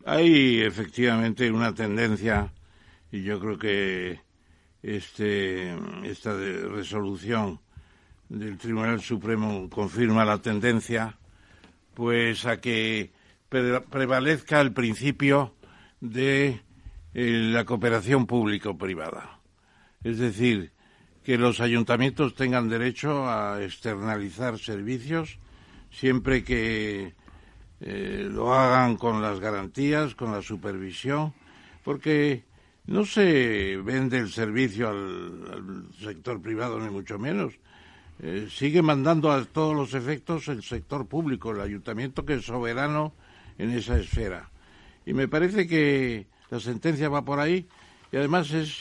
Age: 60-79